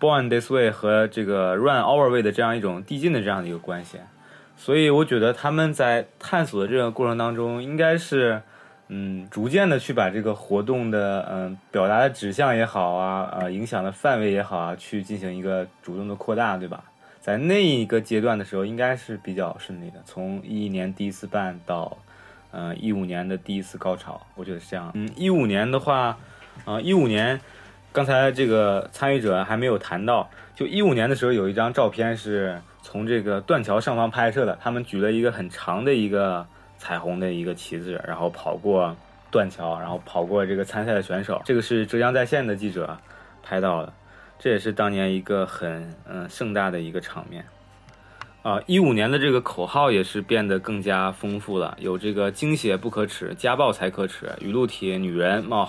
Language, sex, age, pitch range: Chinese, male, 20-39, 95-120 Hz